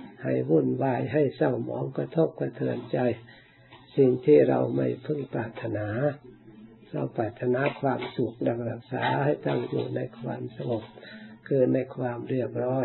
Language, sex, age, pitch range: Thai, male, 60-79, 115-135 Hz